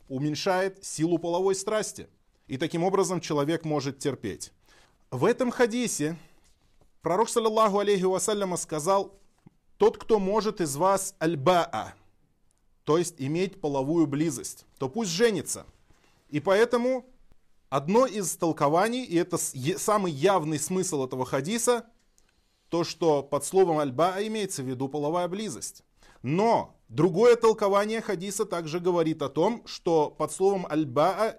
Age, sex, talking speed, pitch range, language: 20-39, male, 120 wpm, 155-230 Hz, Russian